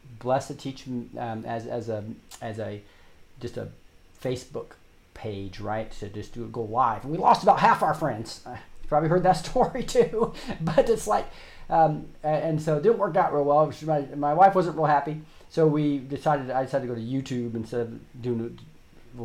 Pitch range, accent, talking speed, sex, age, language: 115-150 Hz, American, 195 wpm, male, 30-49, English